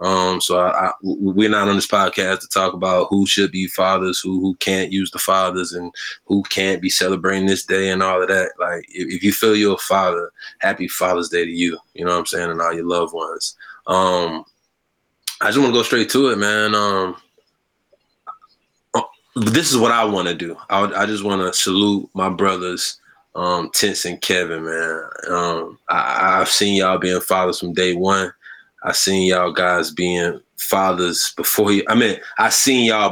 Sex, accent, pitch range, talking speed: male, American, 90-95 Hz, 200 wpm